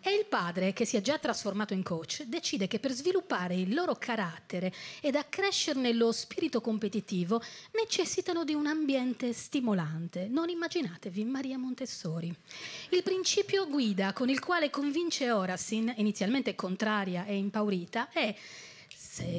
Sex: female